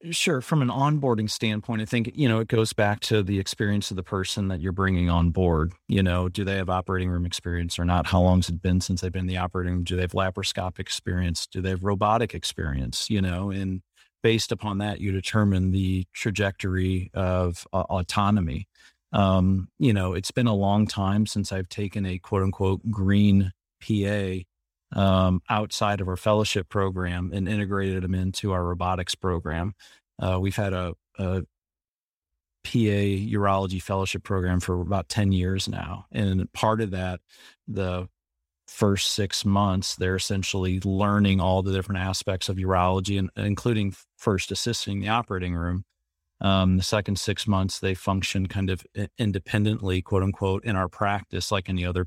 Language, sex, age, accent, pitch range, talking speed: English, male, 40-59, American, 90-105 Hz, 175 wpm